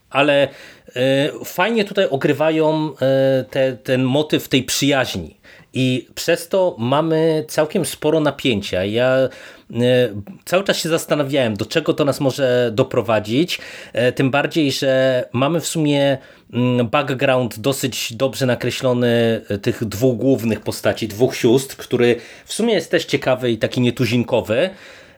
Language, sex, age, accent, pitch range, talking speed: Polish, male, 30-49, native, 120-150 Hz, 120 wpm